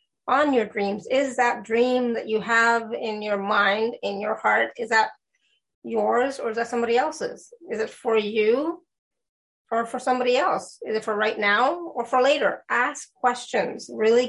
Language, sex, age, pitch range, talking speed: English, female, 30-49, 215-260 Hz, 175 wpm